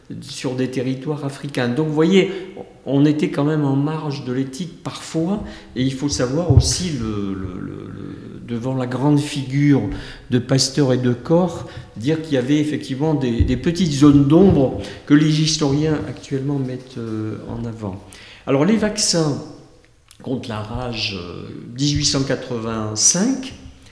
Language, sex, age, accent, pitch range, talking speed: French, male, 50-69, French, 125-160 Hz, 145 wpm